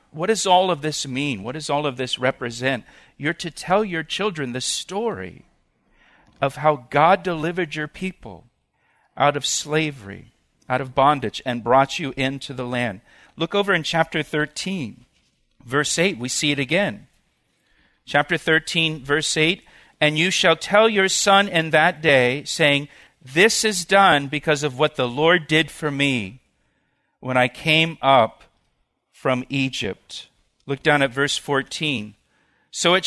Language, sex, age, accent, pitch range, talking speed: English, male, 50-69, American, 135-165 Hz, 155 wpm